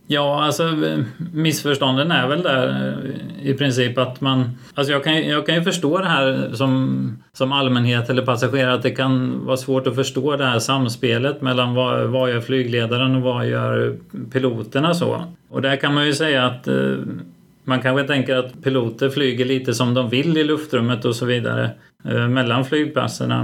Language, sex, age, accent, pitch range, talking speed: Swedish, male, 30-49, native, 115-135 Hz, 175 wpm